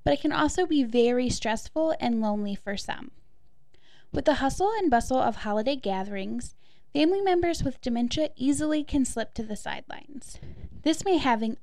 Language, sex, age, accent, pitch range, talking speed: English, female, 10-29, American, 220-290 Hz, 165 wpm